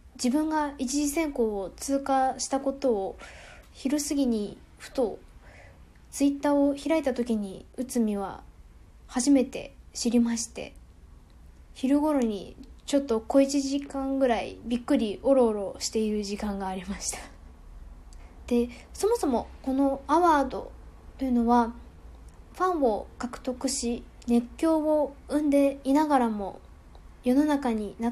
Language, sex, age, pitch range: Japanese, female, 10-29, 215-280 Hz